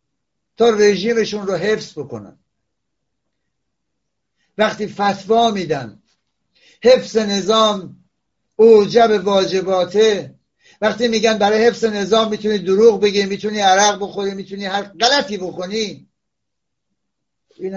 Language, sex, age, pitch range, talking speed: Persian, male, 60-79, 180-220 Hz, 95 wpm